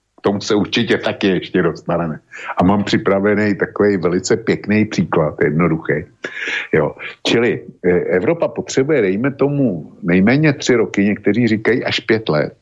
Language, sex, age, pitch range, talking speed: Slovak, male, 50-69, 90-120 Hz, 135 wpm